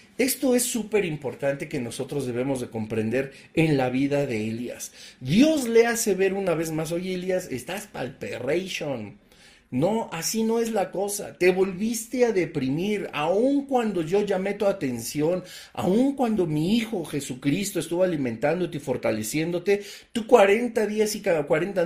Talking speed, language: 155 wpm, Spanish